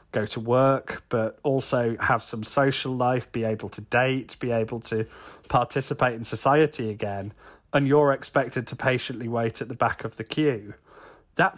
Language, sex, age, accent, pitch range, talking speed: English, male, 30-49, British, 115-140 Hz, 170 wpm